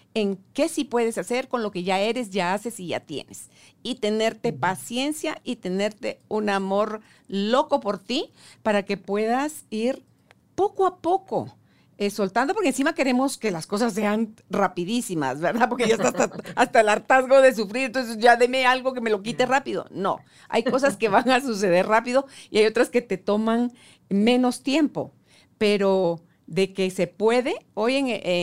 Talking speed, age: 175 wpm, 50-69